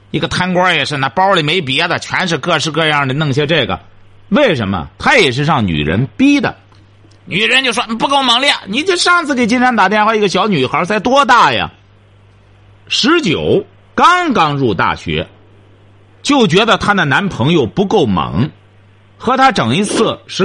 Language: Chinese